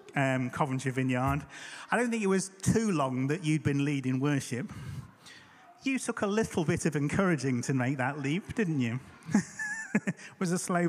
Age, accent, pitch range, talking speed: 30-49, British, 130-180 Hz, 175 wpm